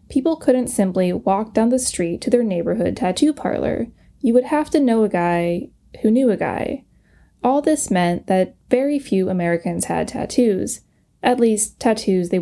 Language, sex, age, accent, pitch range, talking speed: English, female, 10-29, American, 185-255 Hz, 175 wpm